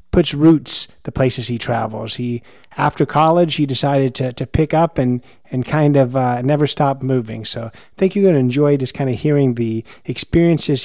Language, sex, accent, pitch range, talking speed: English, male, American, 125-150 Hz, 195 wpm